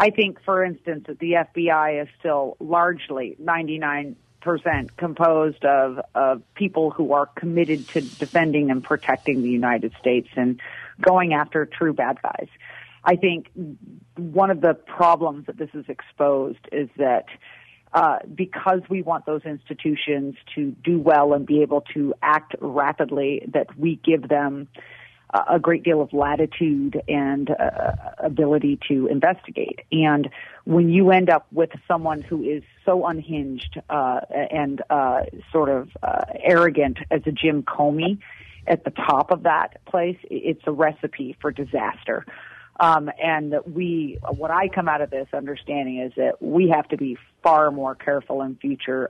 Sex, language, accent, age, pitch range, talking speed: female, English, American, 40-59, 140-165 Hz, 155 wpm